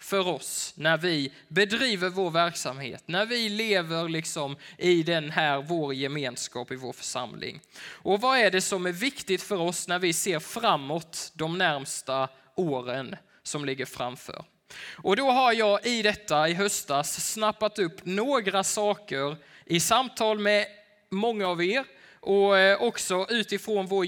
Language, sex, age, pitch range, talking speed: Swedish, male, 20-39, 160-210 Hz, 150 wpm